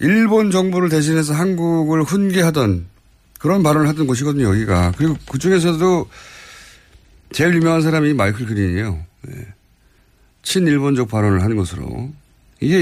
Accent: native